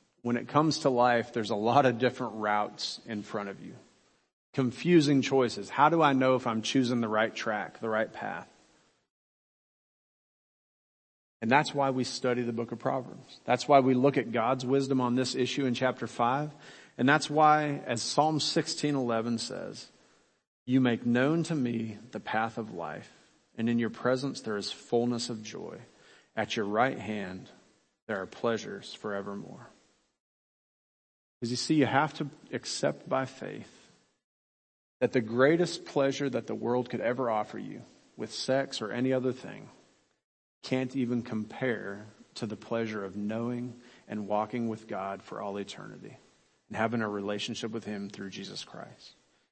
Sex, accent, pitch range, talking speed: male, American, 110-130 Hz, 165 wpm